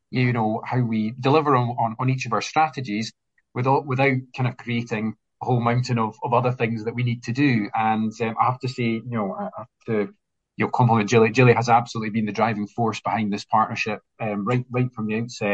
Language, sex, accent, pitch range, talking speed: English, male, British, 105-120 Hz, 230 wpm